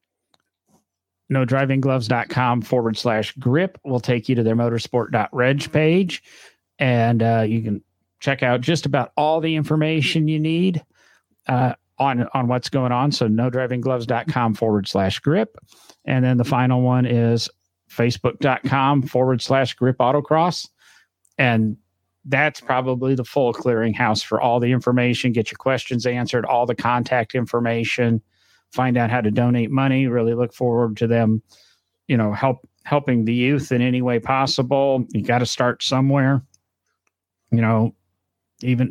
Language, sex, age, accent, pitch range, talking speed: English, male, 40-59, American, 115-140 Hz, 145 wpm